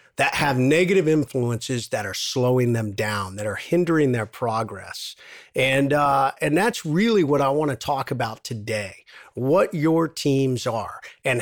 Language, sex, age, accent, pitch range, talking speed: English, male, 50-69, American, 125-165 Hz, 165 wpm